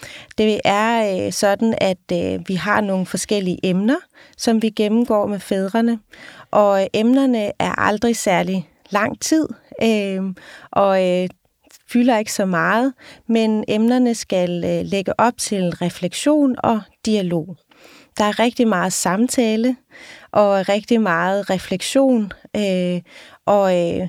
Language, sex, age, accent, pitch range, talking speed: Danish, female, 30-49, native, 185-230 Hz, 115 wpm